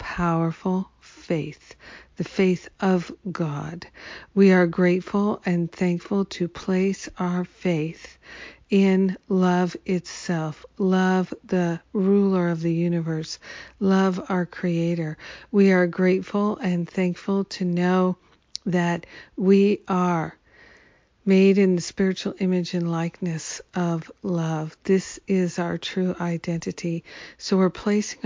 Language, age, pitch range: English, 50-69, 170-195 Hz